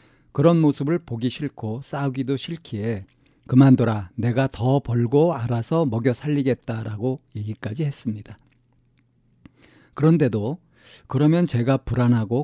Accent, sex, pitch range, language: native, male, 115-140 Hz, Korean